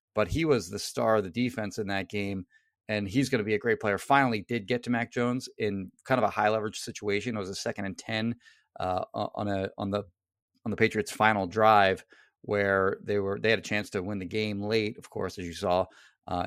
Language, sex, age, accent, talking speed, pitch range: English, male, 30-49, American, 240 wpm, 100-125 Hz